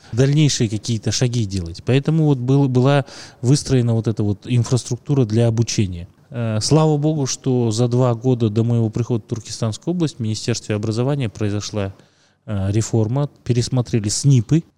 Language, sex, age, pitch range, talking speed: Russian, male, 20-39, 110-135 Hz, 130 wpm